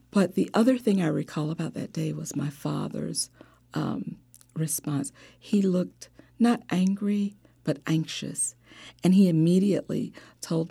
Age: 50-69